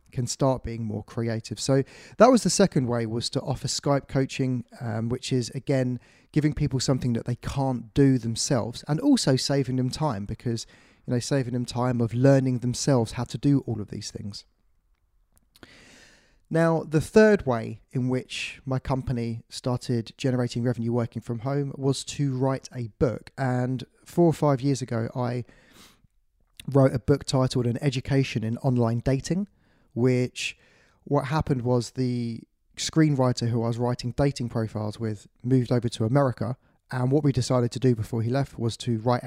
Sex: male